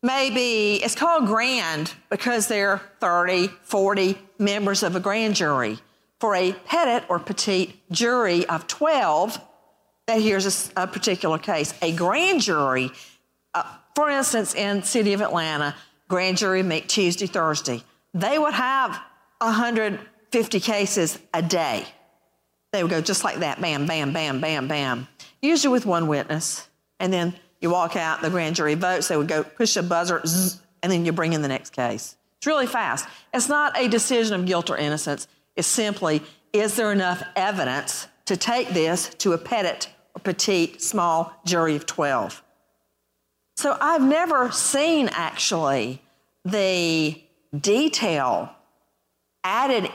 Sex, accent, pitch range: female, American, 165-225 Hz